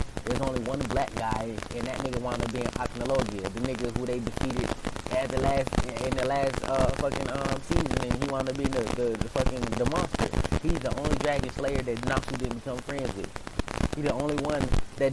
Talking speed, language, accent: 215 wpm, English, American